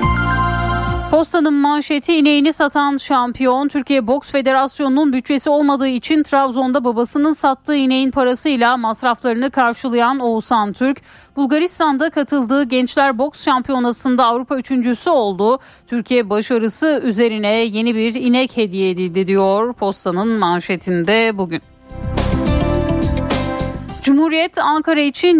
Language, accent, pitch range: Turkish, native, 225-285 Hz